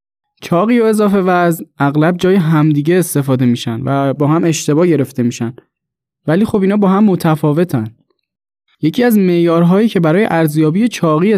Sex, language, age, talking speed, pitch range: male, English, 20-39, 150 wpm, 150-185 Hz